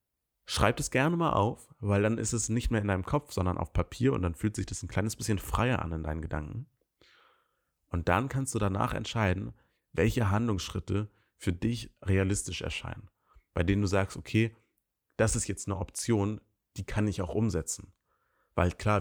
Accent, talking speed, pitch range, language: German, 185 wpm, 90-110 Hz, German